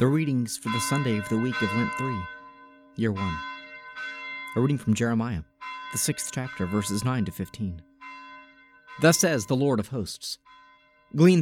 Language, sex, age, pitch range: English, male, 40-59, 110-145 Hz